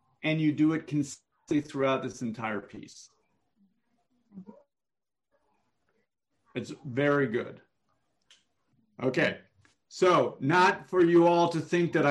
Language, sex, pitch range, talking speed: English, male, 130-170 Hz, 105 wpm